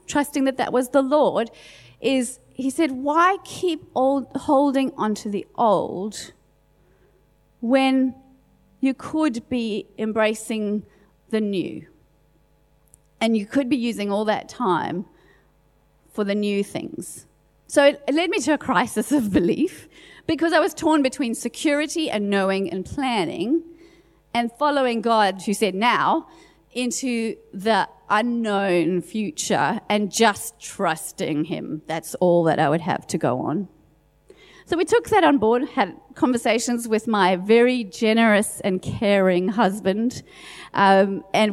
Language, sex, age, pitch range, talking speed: English, female, 40-59, 195-270 Hz, 135 wpm